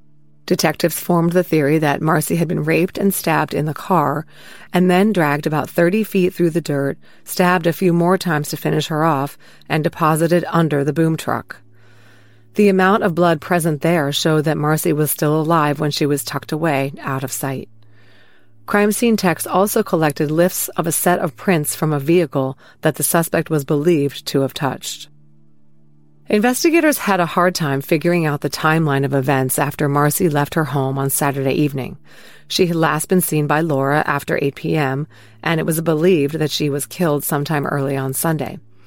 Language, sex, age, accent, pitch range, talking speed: English, female, 40-59, American, 140-175 Hz, 185 wpm